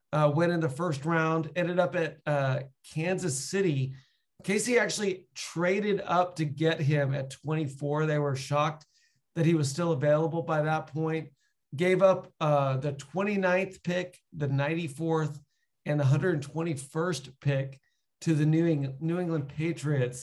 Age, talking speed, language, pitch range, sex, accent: 40-59, 150 wpm, English, 145-175 Hz, male, American